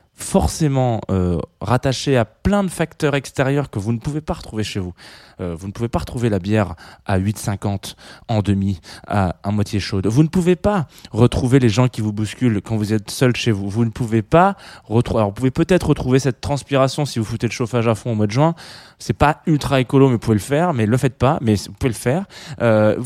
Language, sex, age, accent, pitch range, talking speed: French, male, 20-39, French, 100-135 Hz, 235 wpm